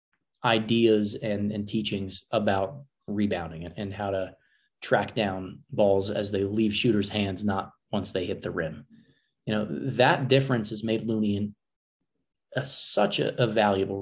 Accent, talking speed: American, 160 wpm